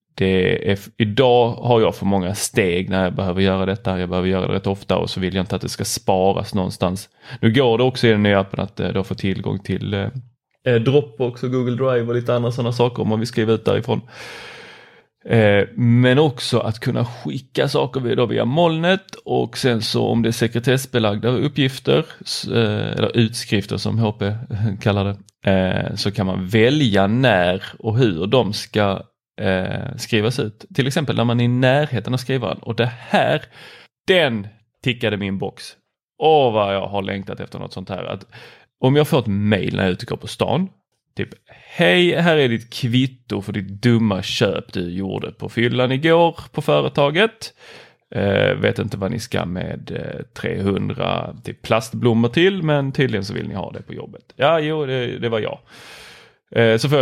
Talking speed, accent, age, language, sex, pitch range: 180 wpm, native, 20-39, Swedish, male, 100-130 Hz